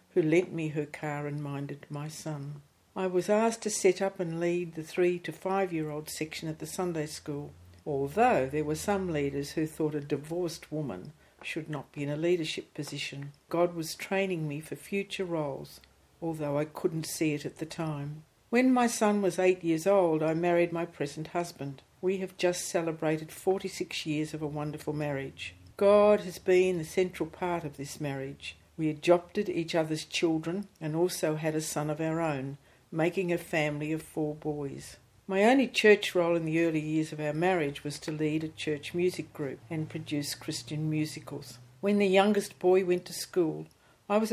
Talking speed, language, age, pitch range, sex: 190 wpm, English, 60-79, 150-180 Hz, female